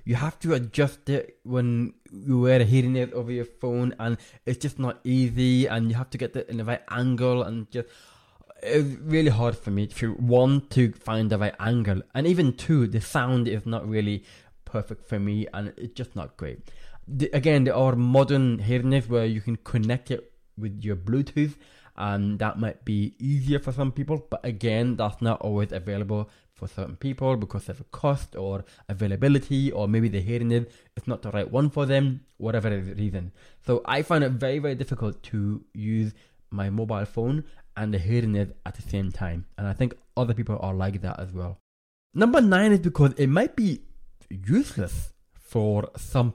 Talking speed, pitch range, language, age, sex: 195 wpm, 105-135 Hz, English, 20-39, male